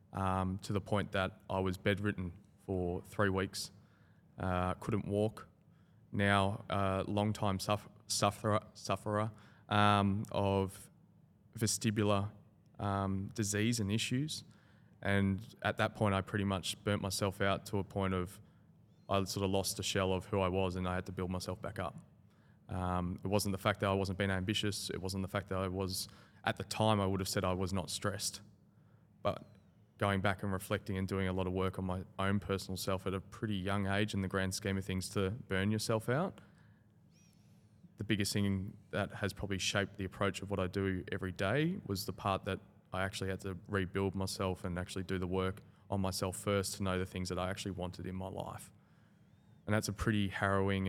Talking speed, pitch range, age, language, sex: 195 wpm, 95-105 Hz, 20-39, English, male